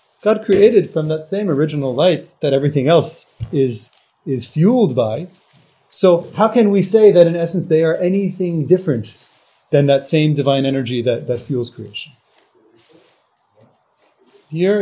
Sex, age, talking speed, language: male, 30-49, 145 wpm, English